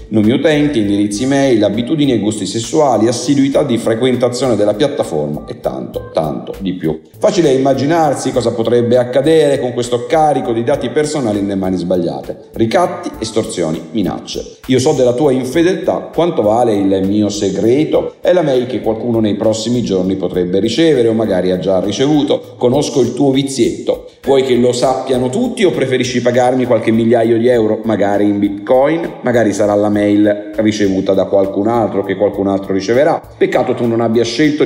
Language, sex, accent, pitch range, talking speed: Italian, male, native, 100-130 Hz, 165 wpm